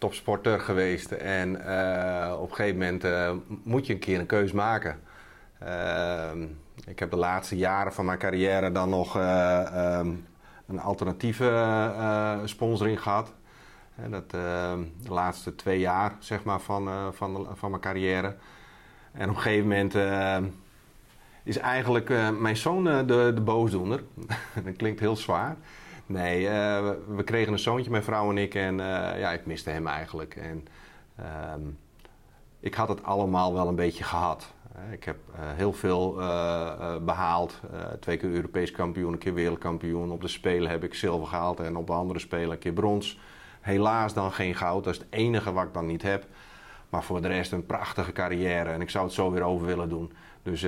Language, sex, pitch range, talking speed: Dutch, male, 90-105 Hz, 180 wpm